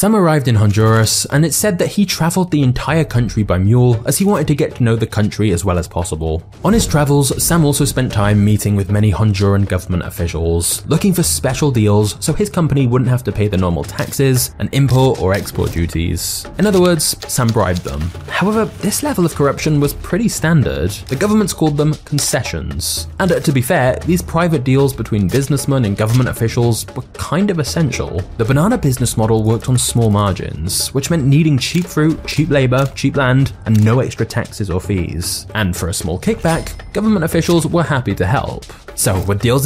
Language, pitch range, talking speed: English, 100-145 Hz, 200 wpm